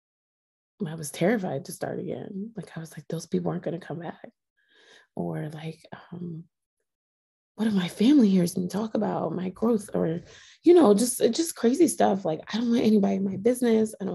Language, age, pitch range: English, 20-39, 155-215 Hz